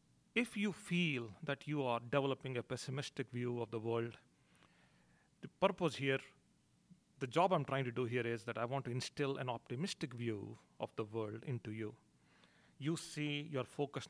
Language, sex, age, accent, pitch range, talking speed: English, male, 40-59, Indian, 120-150 Hz, 175 wpm